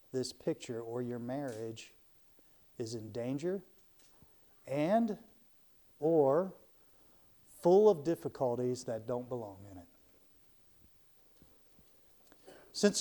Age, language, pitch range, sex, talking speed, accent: 50-69, English, 130-185 Hz, male, 90 wpm, American